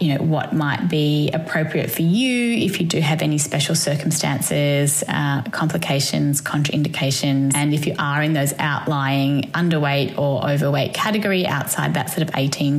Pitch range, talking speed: 160-220 Hz, 160 wpm